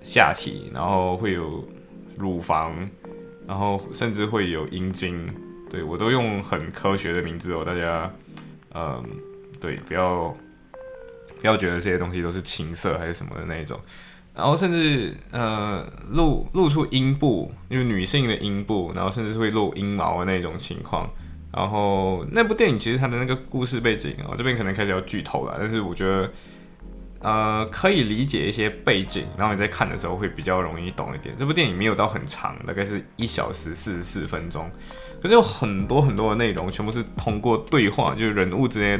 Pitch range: 90-120 Hz